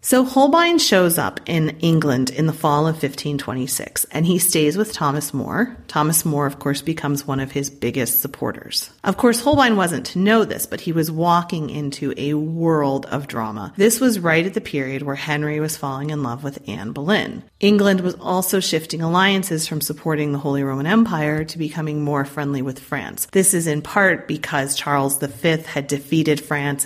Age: 30-49